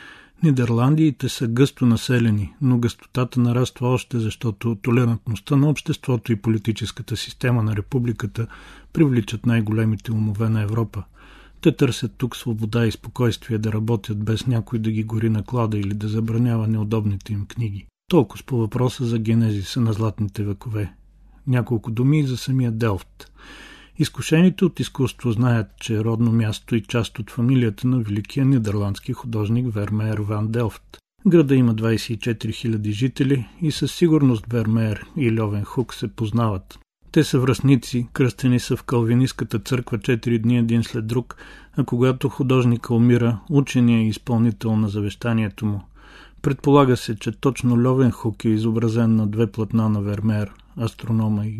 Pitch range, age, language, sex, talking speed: 110-125 Hz, 40-59, Bulgarian, male, 150 wpm